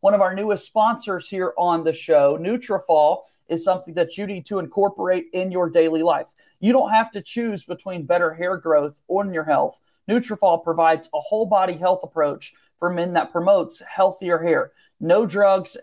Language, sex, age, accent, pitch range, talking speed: English, male, 40-59, American, 165-210 Hz, 185 wpm